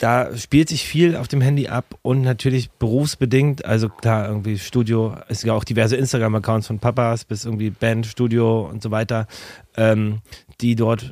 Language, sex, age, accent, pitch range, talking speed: German, male, 30-49, German, 110-130 Hz, 165 wpm